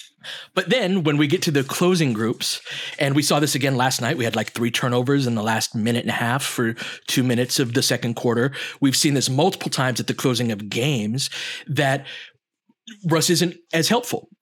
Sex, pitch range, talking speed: male, 130-170 Hz, 210 wpm